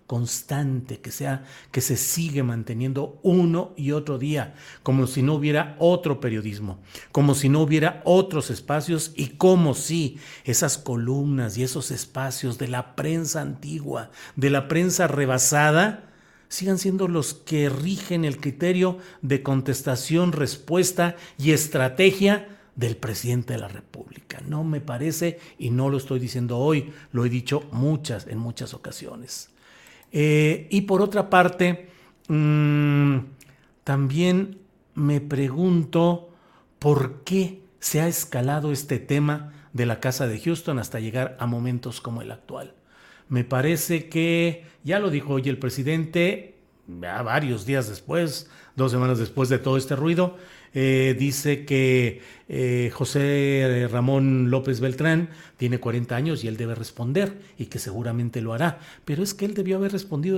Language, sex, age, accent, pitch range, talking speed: Spanish, male, 50-69, Mexican, 130-170 Hz, 145 wpm